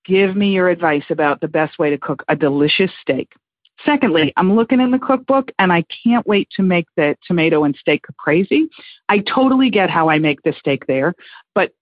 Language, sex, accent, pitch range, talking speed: English, female, American, 170-230 Hz, 205 wpm